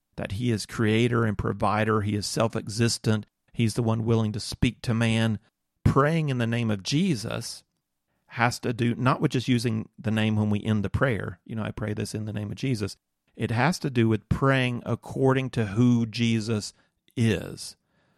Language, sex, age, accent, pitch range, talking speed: English, male, 40-59, American, 105-125 Hz, 190 wpm